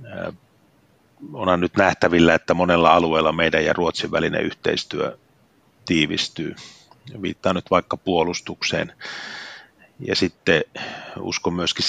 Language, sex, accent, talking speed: Finnish, male, native, 100 wpm